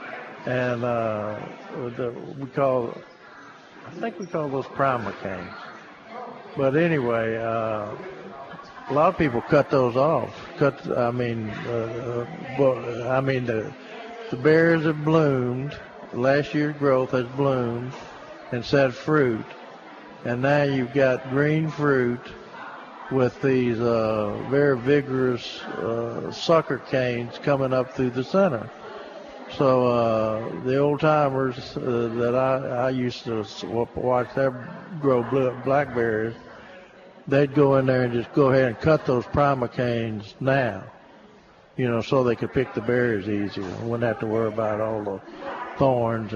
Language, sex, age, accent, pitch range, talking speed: English, male, 60-79, American, 115-140 Hz, 140 wpm